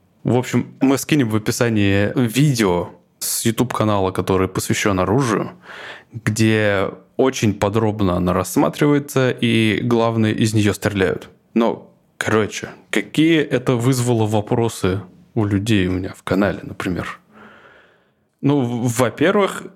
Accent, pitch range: native, 95-120 Hz